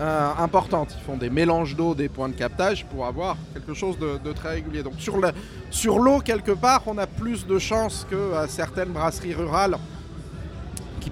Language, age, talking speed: French, 30-49, 200 wpm